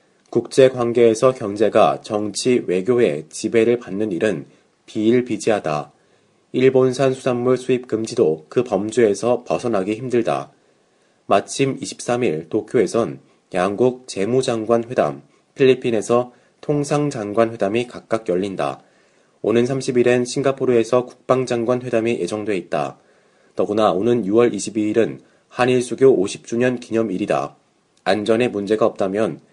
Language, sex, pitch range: Korean, male, 110-125 Hz